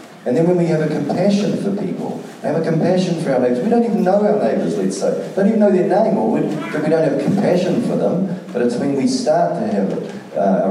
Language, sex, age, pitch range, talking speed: English, male, 40-59, 135-210 Hz, 250 wpm